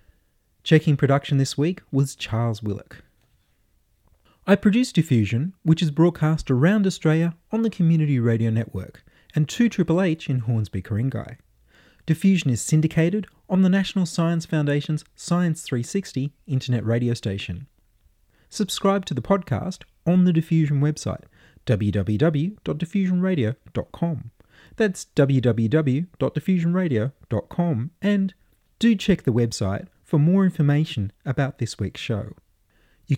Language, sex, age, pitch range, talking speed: English, male, 30-49, 120-180 Hz, 115 wpm